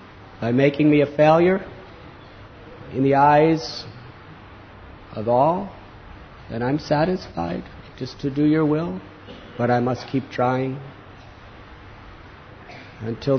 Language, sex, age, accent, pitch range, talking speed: English, male, 50-69, American, 100-145 Hz, 110 wpm